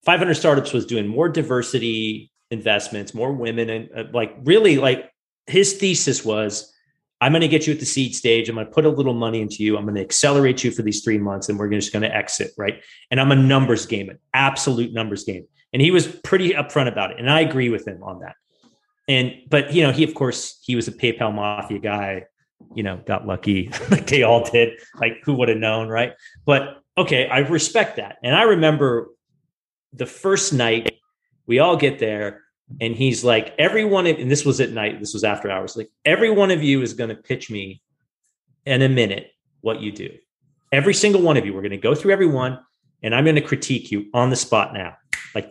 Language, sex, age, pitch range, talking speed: English, male, 30-49, 110-155 Hz, 225 wpm